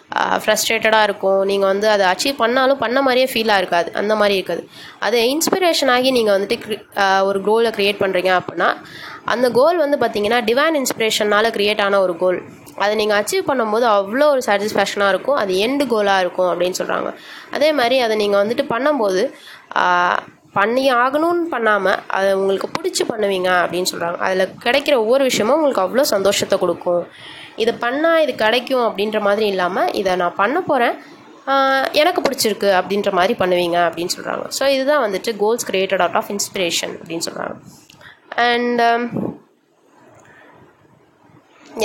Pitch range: 195-260 Hz